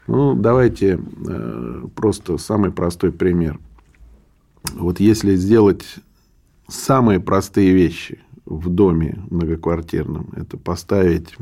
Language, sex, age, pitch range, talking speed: Russian, male, 40-59, 85-110 Hz, 90 wpm